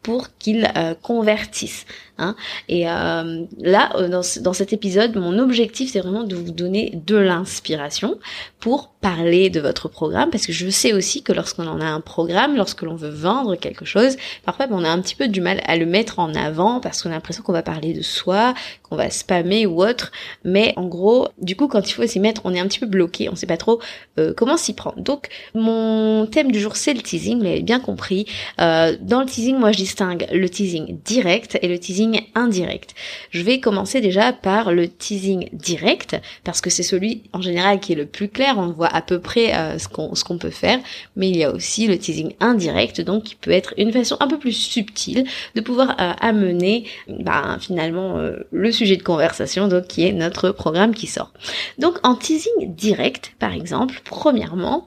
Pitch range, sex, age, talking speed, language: 180-230 Hz, female, 20-39, 205 wpm, French